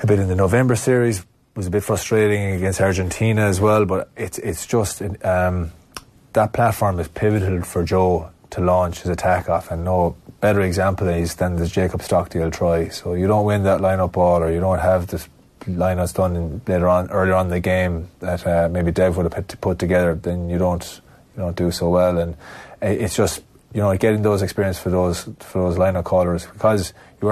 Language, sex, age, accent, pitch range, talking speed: English, male, 20-39, Irish, 90-105 Hz, 205 wpm